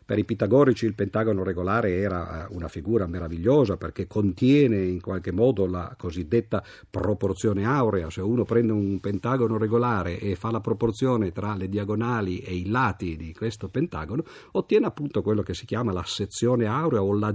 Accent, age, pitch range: native, 50-69, 95-125 Hz